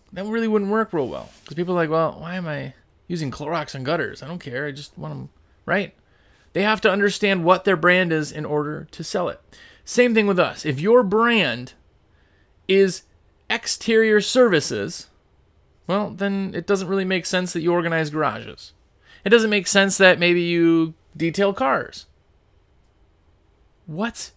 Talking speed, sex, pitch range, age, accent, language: 170 wpm, male, 140-195 Hz, 30-49, American, English